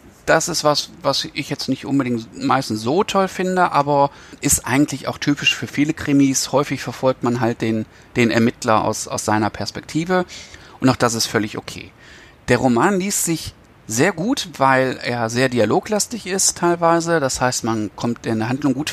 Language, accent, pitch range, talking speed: German, German, 115-150 Hz, 180 wpm